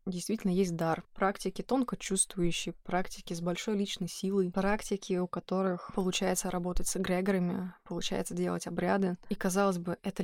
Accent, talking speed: native, 145 wpm